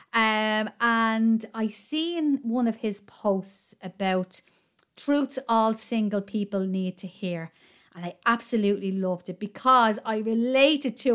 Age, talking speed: 30-49, 135 wpm